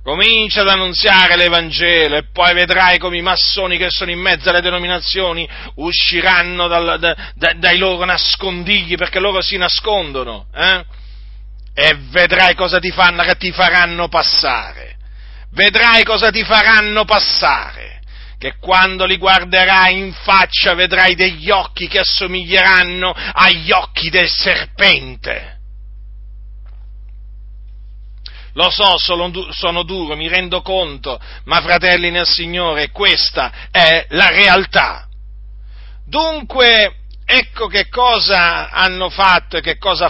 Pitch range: 150-190 Hz